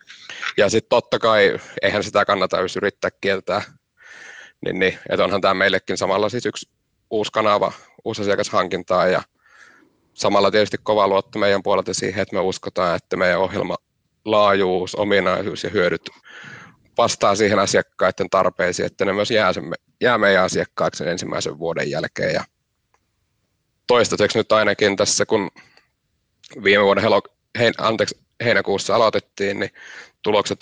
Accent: native